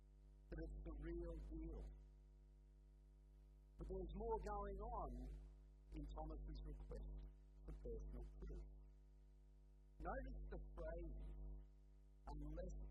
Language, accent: English, American